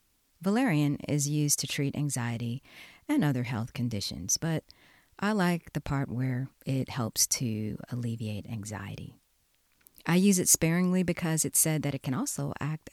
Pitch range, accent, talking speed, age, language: 125-155 Hz, American, 155 wpm, 40-59, English